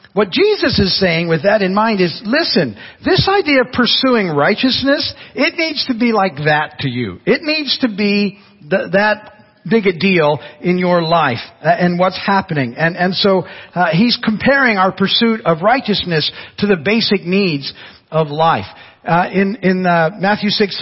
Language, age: English, 50-69